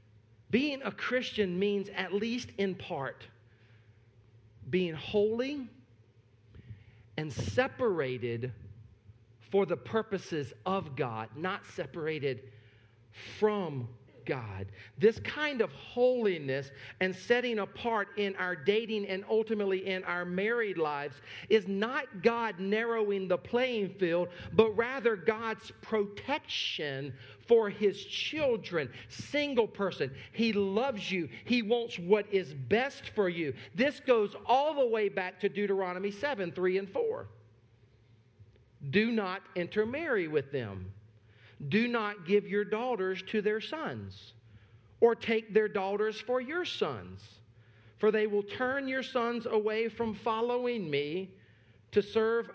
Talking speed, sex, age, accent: 120 wpm, male, 50-69, American